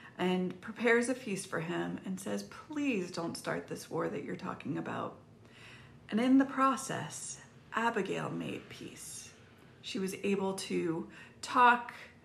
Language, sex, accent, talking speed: English, female, American, 140 wpm